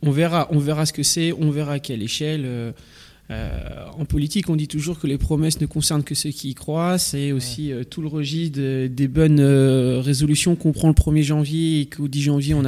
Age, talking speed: 20-39, 235 wpm